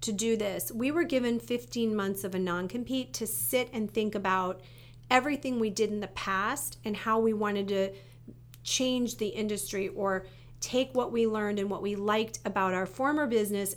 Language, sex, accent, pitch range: English, female, American, 190-225 Hz